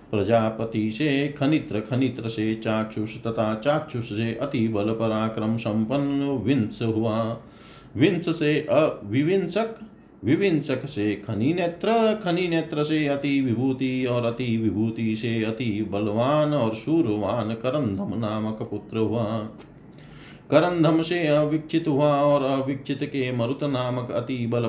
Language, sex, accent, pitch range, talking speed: Hindi, male, native, 110-145 Hz, 115 wpm